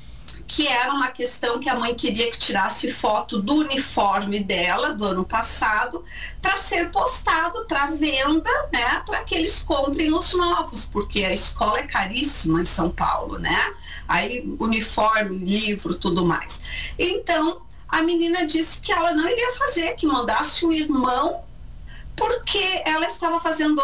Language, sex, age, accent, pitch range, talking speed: Portuguese, female, 40-59, Brazilian, 225-325 Hz, 155 wpm